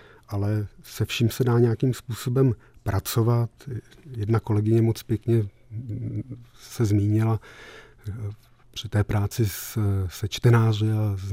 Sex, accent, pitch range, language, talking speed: male, native, 105-115 Hz, Czech, 110 wpm